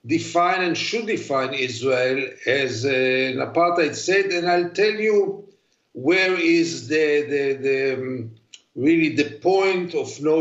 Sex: male